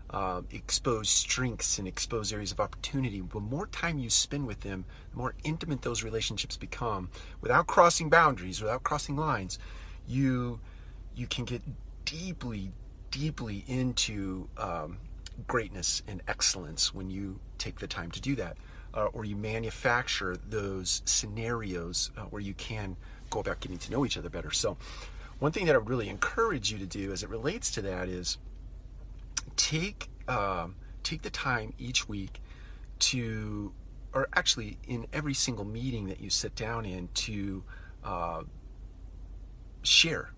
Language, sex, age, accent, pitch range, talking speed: English, male, 30-49, American, 95-120 Hz, 150 wpm